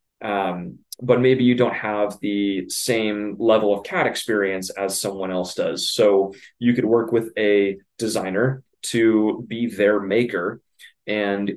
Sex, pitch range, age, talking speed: male, 100-115 Hz, 20-39, 145 wpm